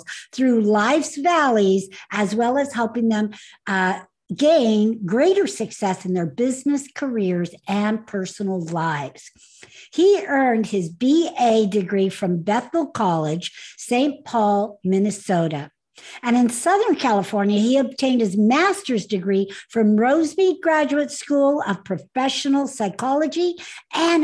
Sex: female